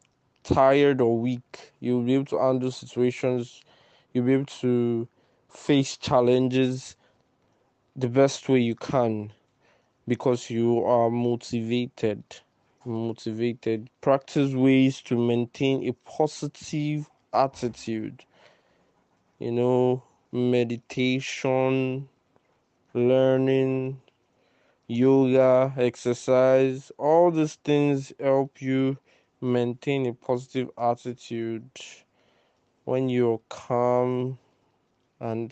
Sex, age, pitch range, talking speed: male, 20-39, 120-135 Hz, 85 wpm